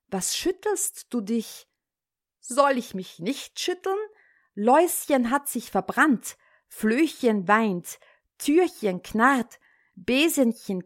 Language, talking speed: German, 100 wpm